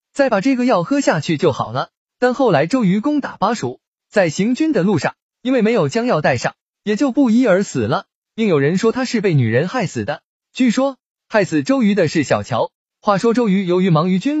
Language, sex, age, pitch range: Chinese, male, 20-39, 170-250 Hz